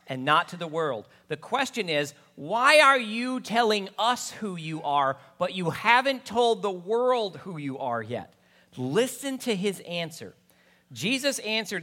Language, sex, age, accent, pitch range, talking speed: English, male, 40-59, American, 155-225 Hz, 160 wpm